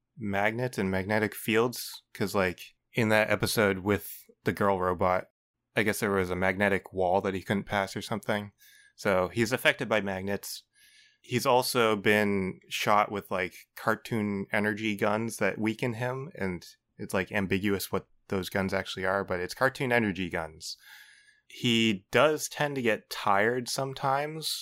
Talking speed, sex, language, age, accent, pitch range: 155 wpm, male, English, 20-39, American, 95-120 Hz